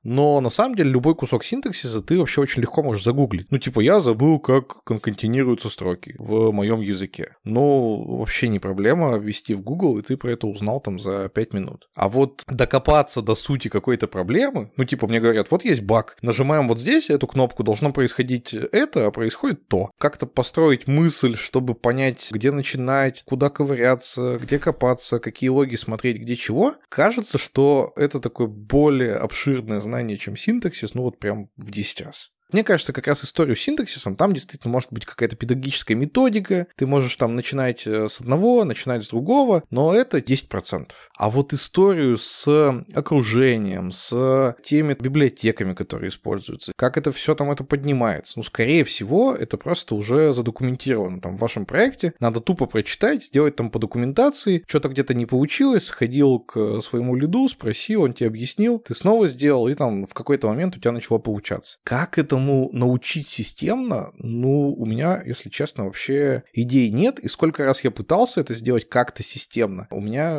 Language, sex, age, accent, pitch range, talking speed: Russian, male, 20-39, native, 115-145 Hz, 175 wpm